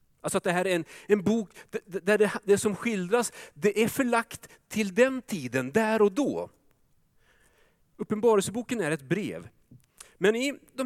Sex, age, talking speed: male, 40-59, 155 wpm